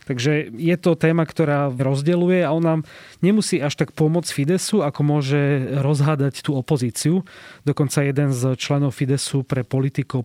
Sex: male